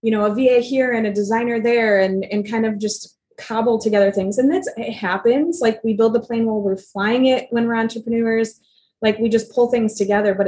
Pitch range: 200-235 Hz